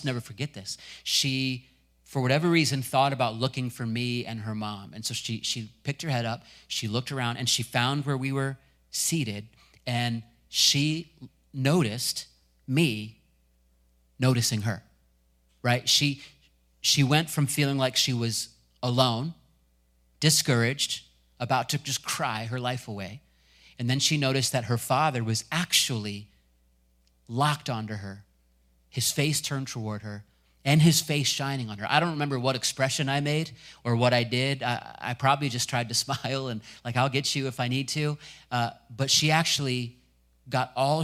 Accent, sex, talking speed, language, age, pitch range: American, male, 165 wpm, English, 30-49, 110-140 Hz